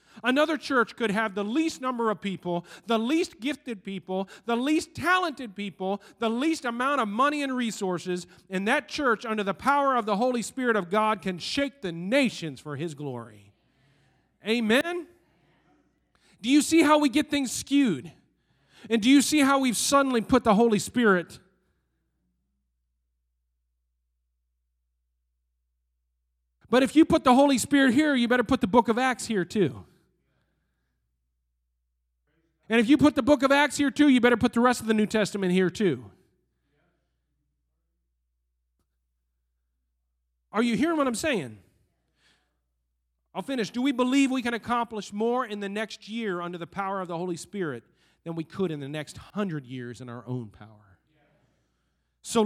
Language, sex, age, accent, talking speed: English, male, 40-59, American, 160 wpm